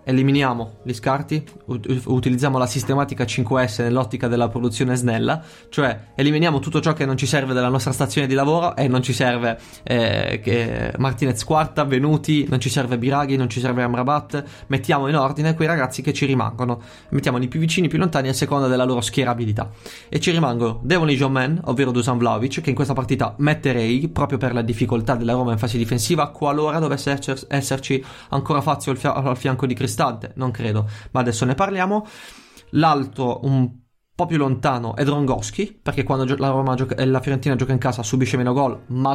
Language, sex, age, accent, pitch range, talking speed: Italian, male, 20-39, native, 120-145 Hz, 185 wpm